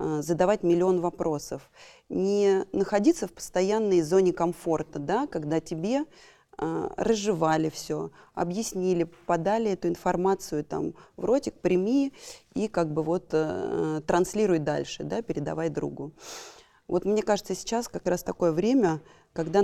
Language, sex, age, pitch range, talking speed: Russian, female, 20-39, 165-210 Hz, 130 wpm